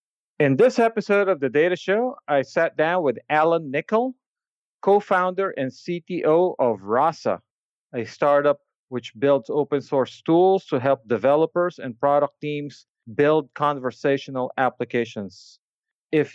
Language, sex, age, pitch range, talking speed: English, male, 40-59, 125-170 Hz, 130 wpm